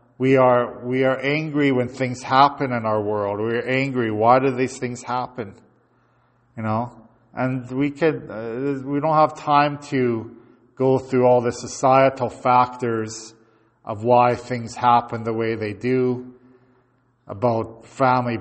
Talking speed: 150 wpm